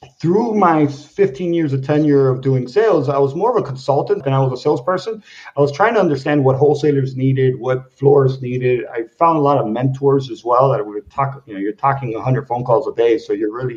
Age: 50-69